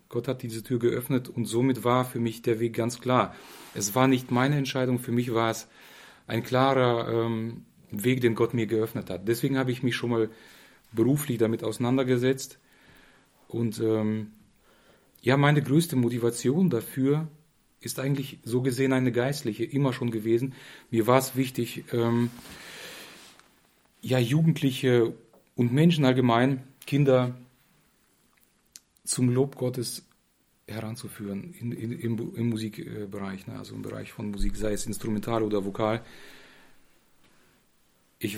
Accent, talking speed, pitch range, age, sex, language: German, 135 wpm, 110-130 Hz, 40-59, male, German